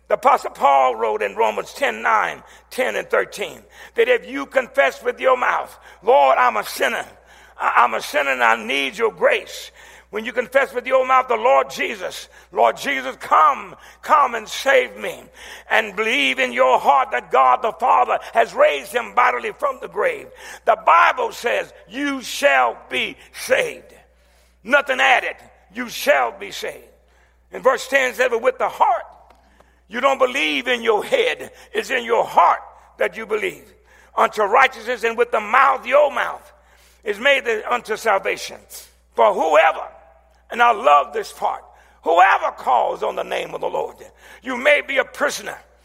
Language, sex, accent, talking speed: English, male, American, 170 wpm